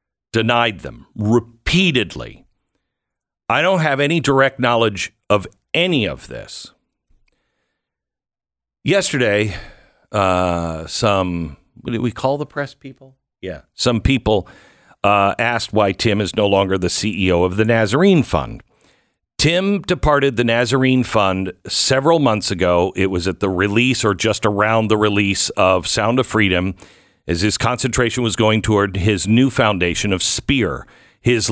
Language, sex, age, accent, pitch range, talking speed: English, male, 50-69, American, 100-120 Hz, 140 wpm